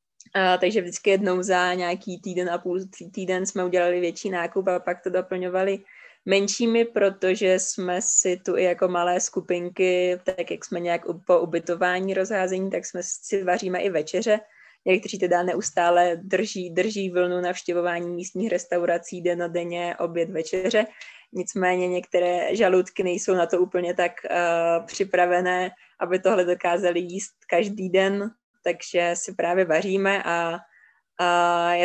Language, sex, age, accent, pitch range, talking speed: Czech, female, 20-39, native, 175-190 Hz, 150 wpm